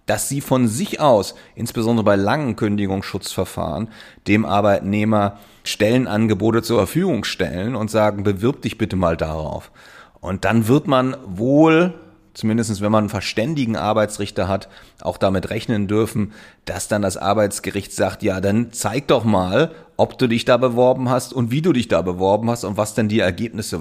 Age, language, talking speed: 30-49, German, 165 wpm